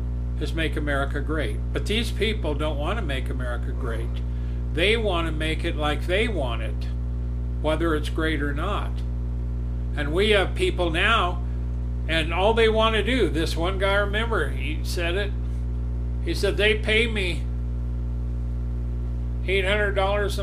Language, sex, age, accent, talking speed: English, male, 60-79, American, 150 wpm